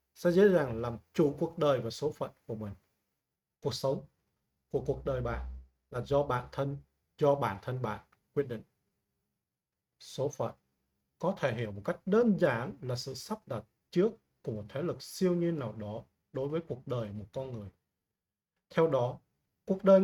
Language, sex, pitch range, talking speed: Vietnamese, male, 115-165 Hz, 185 wpm